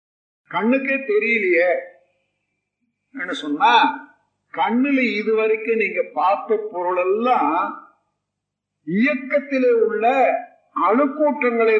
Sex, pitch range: male, 215-290 Hz